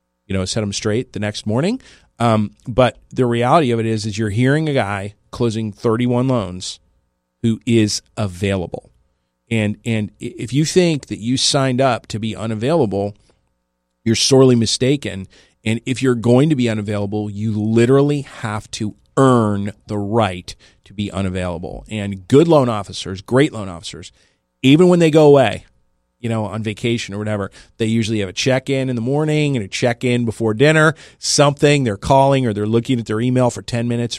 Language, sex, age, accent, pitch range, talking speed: English, male, 40-59, American, 105-135 Hz, 175 wpm